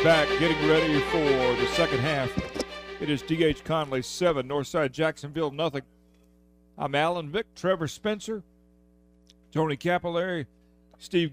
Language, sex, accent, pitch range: English, male, American, 140-180 Hz